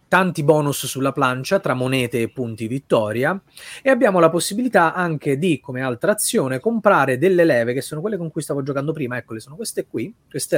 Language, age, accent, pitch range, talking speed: Italian, 30-49, native, 130-195 Hz, 195 wpm